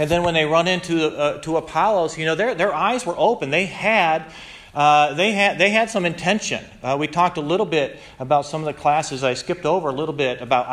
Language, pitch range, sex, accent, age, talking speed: English, 120-160 Hz, male, American, 40-59, 215 wpm